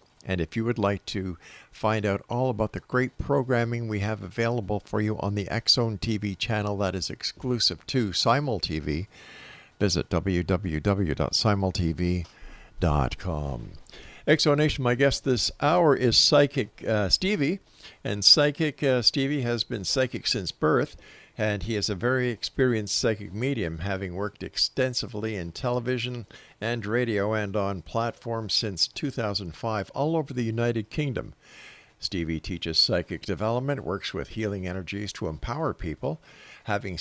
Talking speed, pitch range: 140 wpm, 100-125 Hz